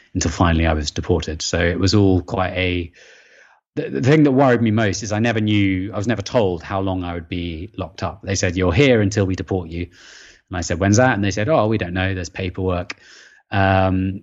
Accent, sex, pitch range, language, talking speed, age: British, male, 90-105 Hz, English, 235 wpm, 30-49